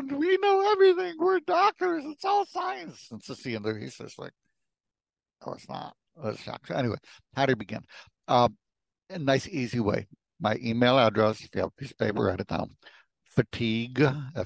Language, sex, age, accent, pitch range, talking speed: English, male, 60-79, American, 100-120 Hz, 165 wpm